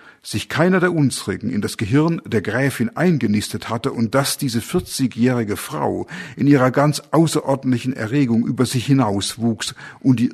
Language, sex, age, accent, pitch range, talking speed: German, male, 50-69, German, 110-140 Hz, 150 wpm